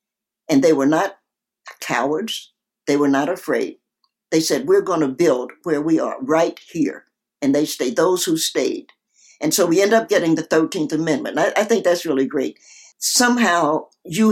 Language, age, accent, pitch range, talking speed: English, 60-79, American, 150-225 Hz, 175 wpm